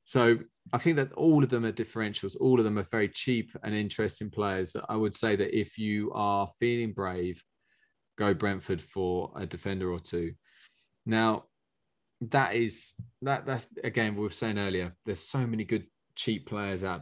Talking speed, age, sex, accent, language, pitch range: 185 wpm, 20-39, male, British, English, 95-115 Hz